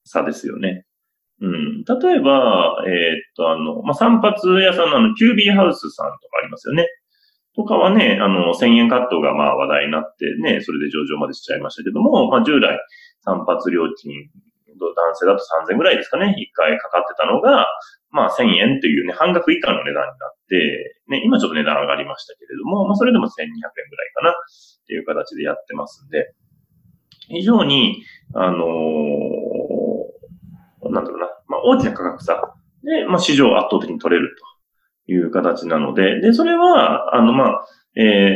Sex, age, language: male, 30-49, Japanese